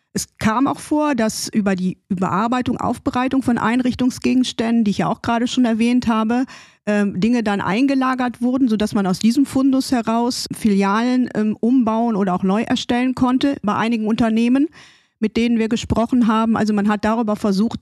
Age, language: 40-59, German